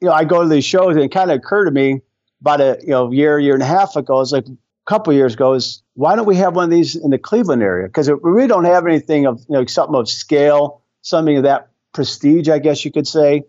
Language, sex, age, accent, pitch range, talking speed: English, male, 50-69, American, 130-155 Hz, 290 wpm